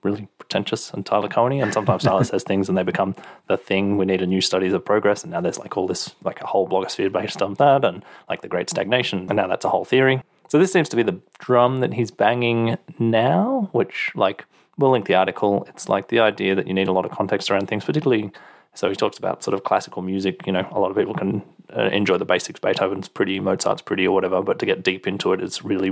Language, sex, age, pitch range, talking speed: English, male, 20-39, 95-120 Hz, 255 wpm